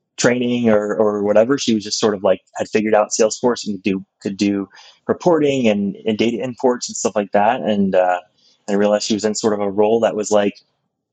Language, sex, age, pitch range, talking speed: English, male, 20-39, 95-105 Hz, 220 wpm